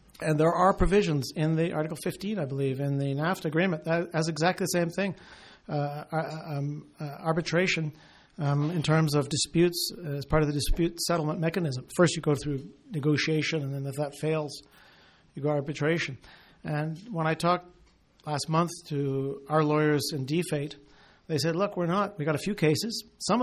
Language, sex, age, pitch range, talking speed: English, male, 50-69, 145-170 Hz, 185 wpm